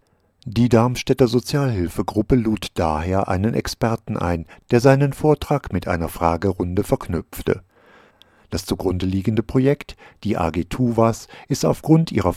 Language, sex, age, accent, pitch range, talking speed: German, male, 50-69, German, 90-125 Hz, 120 wpm